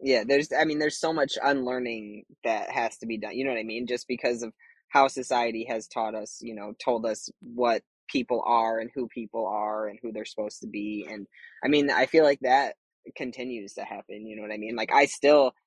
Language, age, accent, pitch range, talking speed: English, 20-39, American, 115-135 Hz, 235 wpm